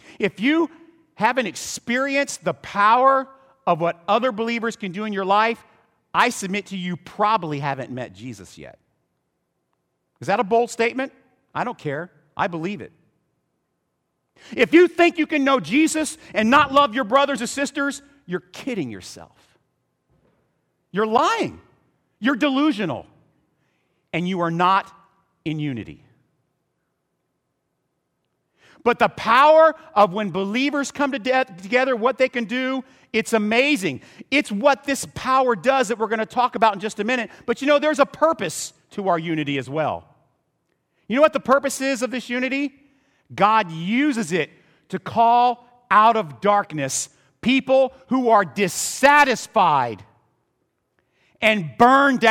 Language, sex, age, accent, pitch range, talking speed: English, male, 50-69, American, 195-270 Hz, 145 wpm